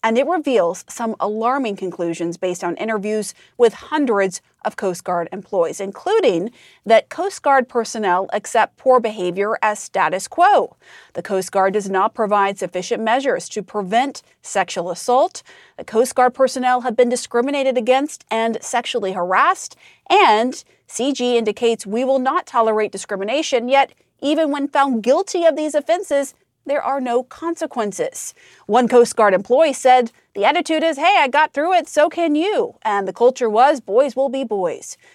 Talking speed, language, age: 160 wpm, English, 40-59